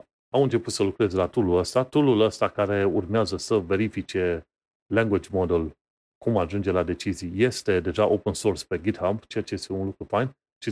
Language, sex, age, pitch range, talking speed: Romanian, male, 30-49, 95-115 Hz, 180 wpm